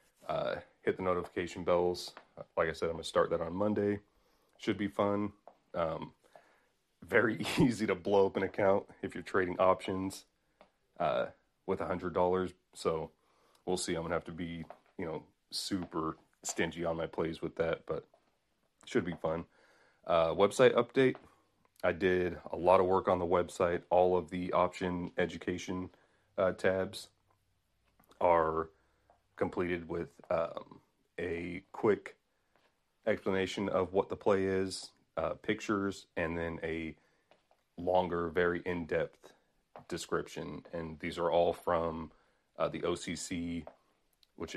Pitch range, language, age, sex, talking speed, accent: 85-95 Hz, English, 30-49, male, 140 wpm, American